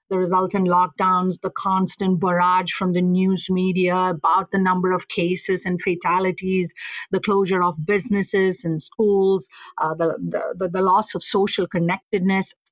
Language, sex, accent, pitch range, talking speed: English, female, Indian, 185-225 Hz, 145 wpm